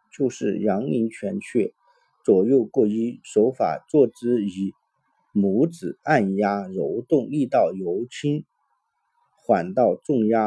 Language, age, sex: Chinese, 50-69, male